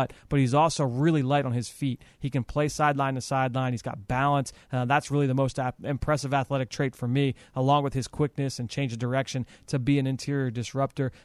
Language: English